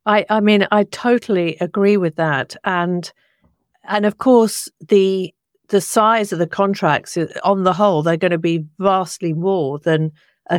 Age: 50-69